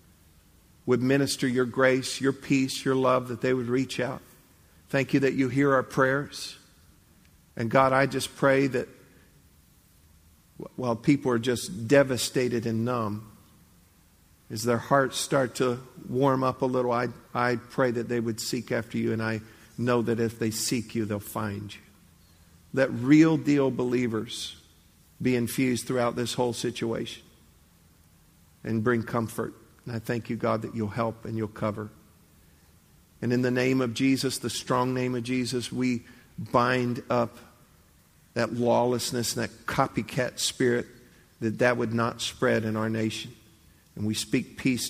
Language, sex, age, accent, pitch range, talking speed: English, male, 50-69, American, 105-125 Hz, 155 wpm